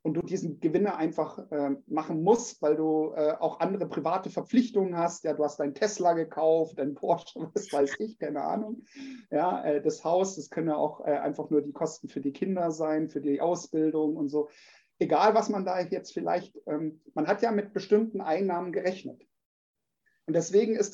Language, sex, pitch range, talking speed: German, male, 160-220 Hz, 195 wpm